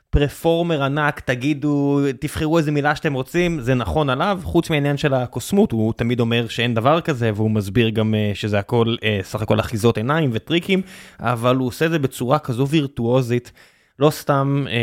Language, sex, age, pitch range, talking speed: Hebrew, male, 20-39, 115-140 Hz, 160 wpm